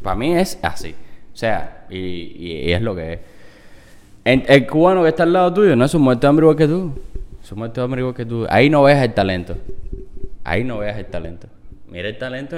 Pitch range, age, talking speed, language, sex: 105-140 Hz, 10-29, 220 wpm, Spanish, male